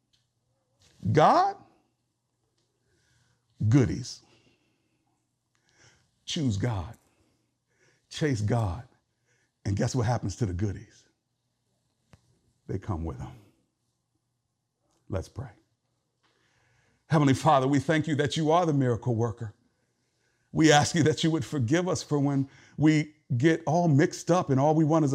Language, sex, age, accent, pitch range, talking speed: English, male, 50-69, American, 115-145 Hz, 120 wpm